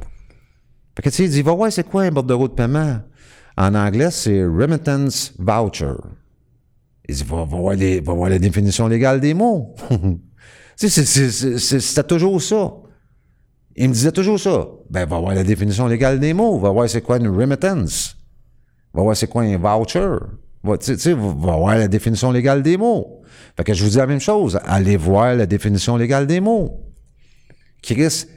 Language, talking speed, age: French, 190 wpm, 50-69